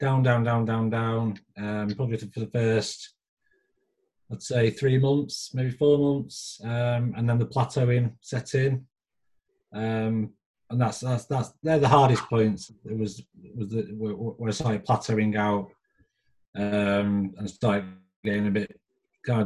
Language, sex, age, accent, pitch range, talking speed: English, male, 30-49, British, 110-145 Hz, 150 wpm